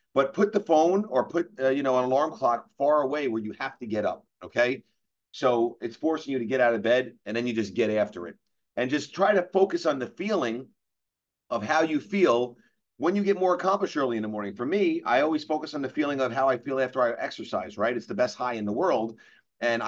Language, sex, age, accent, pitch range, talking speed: English, male, 40-59, American, 120-165 Hz, 250 wpm